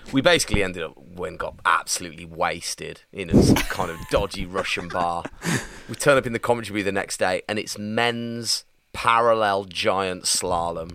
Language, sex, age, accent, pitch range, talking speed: English, male, 30-49, British, 95-135 Hz, 165 wpm